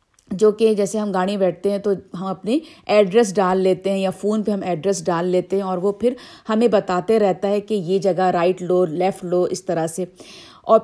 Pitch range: 185-240 Hz